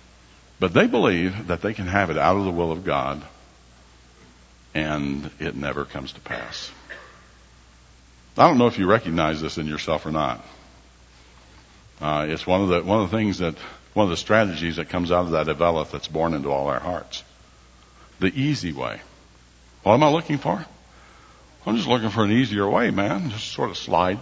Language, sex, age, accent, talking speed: English, male, 60-79, American, 190 wpm